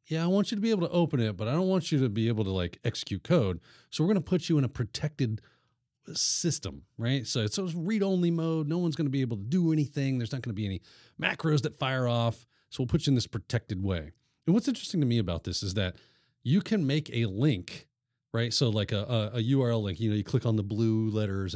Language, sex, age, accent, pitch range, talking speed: English, male, 40-59, American, 110-150 Hz, 265 wpm